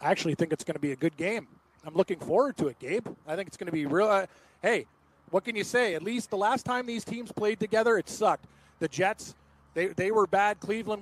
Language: English